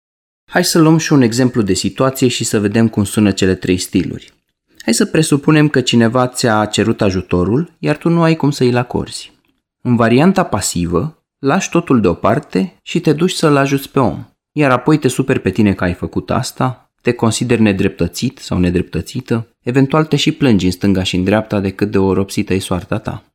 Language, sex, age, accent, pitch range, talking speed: Romanian, male, 20-39, native, 105-150 Hz, 195 wpm